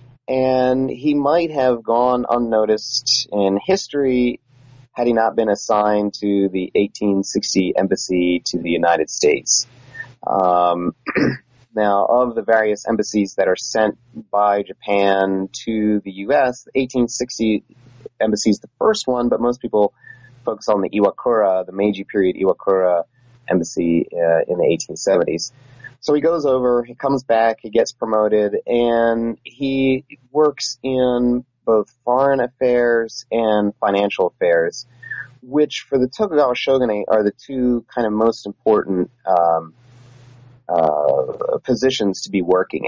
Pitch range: 100-125 Hz